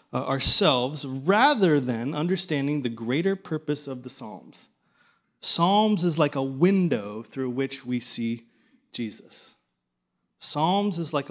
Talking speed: 125 wpm